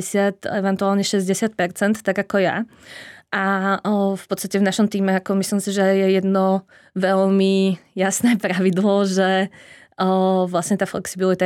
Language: Czech